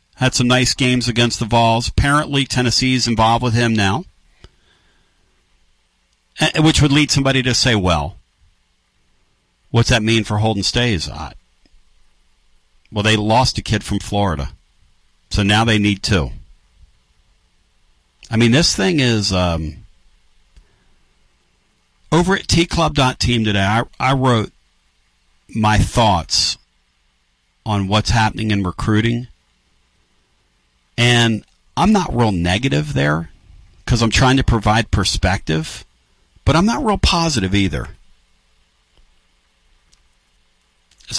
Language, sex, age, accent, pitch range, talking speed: English, male, 50-69, American, 80-120 Hz, 115 wpm